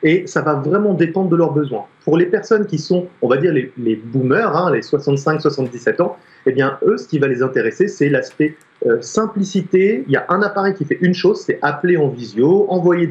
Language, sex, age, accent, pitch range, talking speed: French, male, 30-49, French, 130-190 Hz, 225 wpm